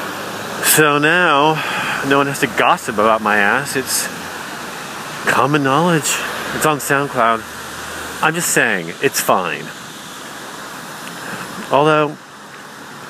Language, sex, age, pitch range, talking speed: English, male, 50-69, 100-170 Hz, 100 wpm